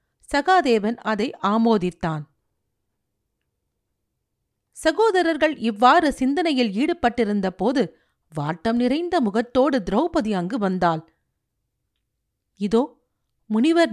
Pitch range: 195-285 Hz